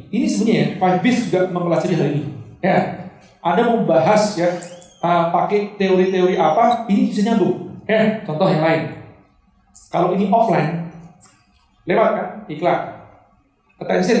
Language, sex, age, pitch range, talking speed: Indonesian, male, 40-59, 165-215 Hz, 135 wpm